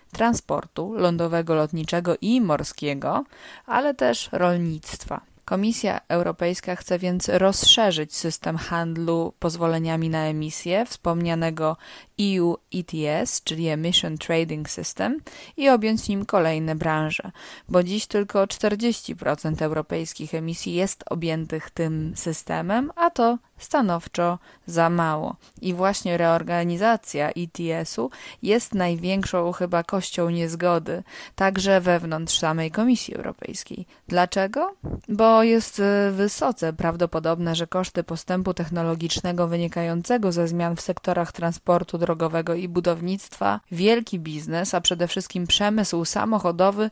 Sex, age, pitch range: female, 20-39, 165-200 Hz